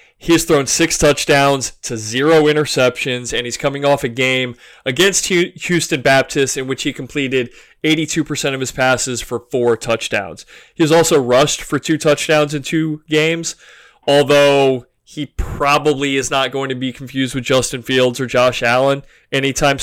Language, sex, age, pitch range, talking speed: English, male, 20-39, 130-155 Hz, 165 wpm